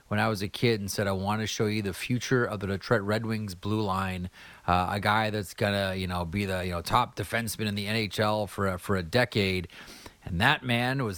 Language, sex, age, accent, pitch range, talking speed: English, male, 30-49, American, 95-120 Hz, 245 wpm